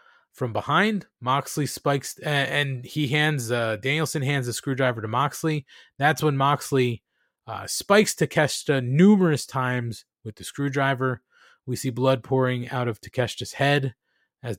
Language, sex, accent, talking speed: English, male, American, 145 wpm